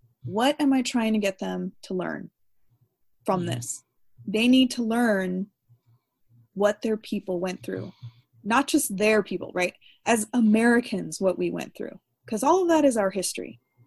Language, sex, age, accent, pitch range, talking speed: English, female, 20-39, American, 180-225 Hz, 165 wpm